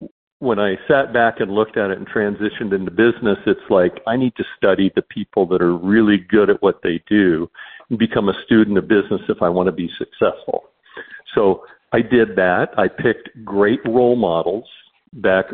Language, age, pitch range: English, 50-69, 100-120 Hz